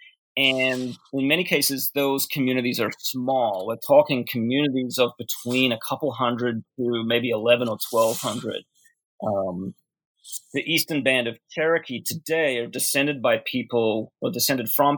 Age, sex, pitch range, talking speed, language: 30-49, male, 120-145 Hz, 140 wpm, English